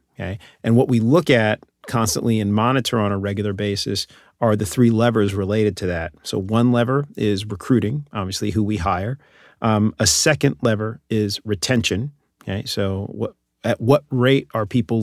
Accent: American